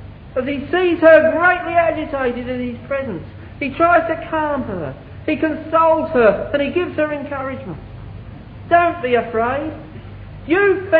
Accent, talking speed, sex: British, 140 wpm, male